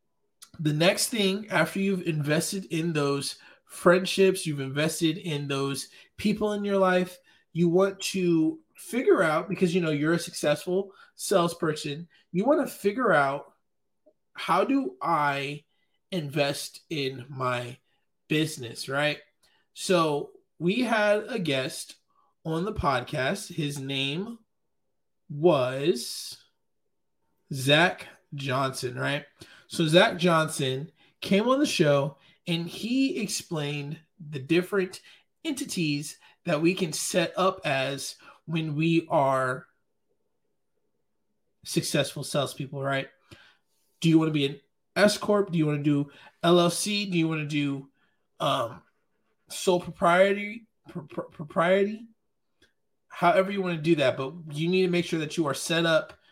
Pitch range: 145-190 Hz